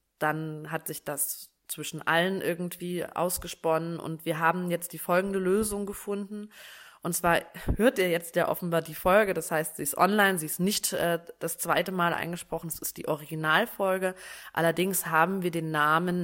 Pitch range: 160-185 Hz